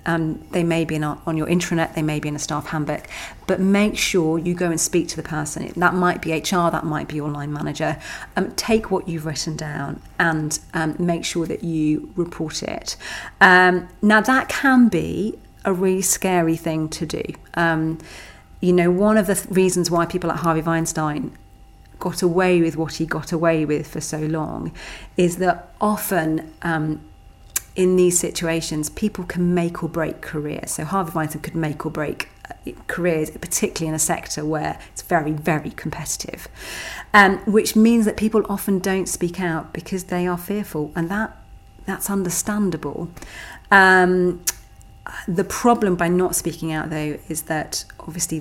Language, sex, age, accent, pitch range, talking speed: English, female, 40-59, British, 160-185 Hz, 175 wpm